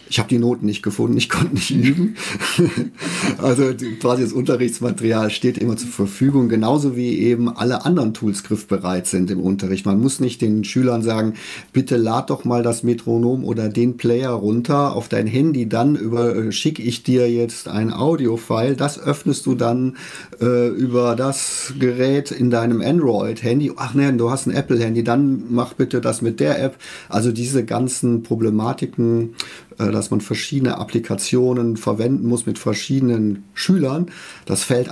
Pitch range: 110-125 Hz